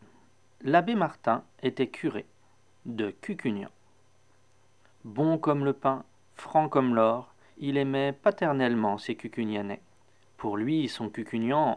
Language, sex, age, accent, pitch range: Japanese, male, 40-59, French, 110-140 Hz